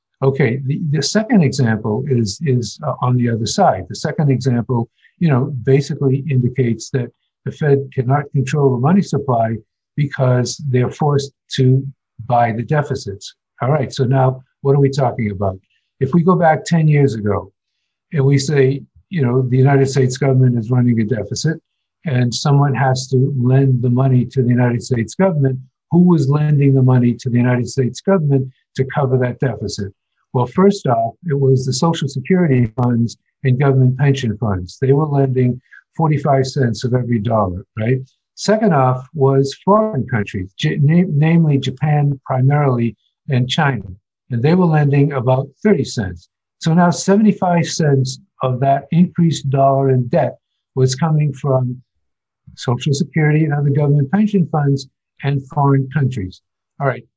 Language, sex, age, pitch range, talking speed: English, male, 60-79, 125-145 Hz, 155 wpm